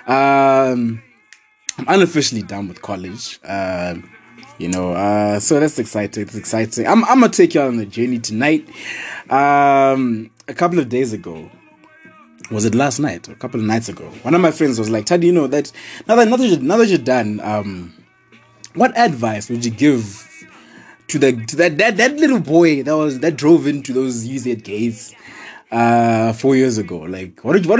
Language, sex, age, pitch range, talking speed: English, male, 20-39, 110-185 Hz, 190 wpm